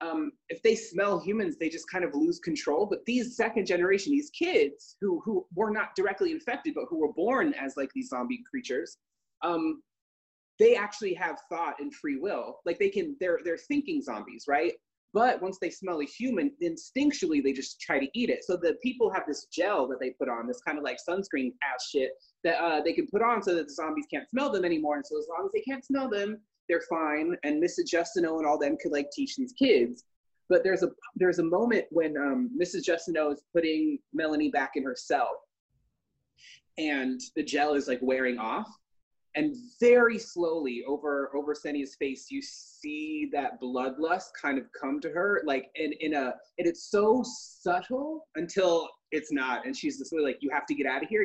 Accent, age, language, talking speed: American, 20-39, English, 205 wpm